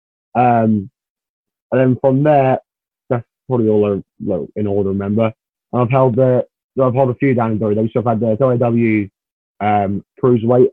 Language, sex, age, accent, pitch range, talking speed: English, male, 30-49, British, 105-120 Hz, 175 wpm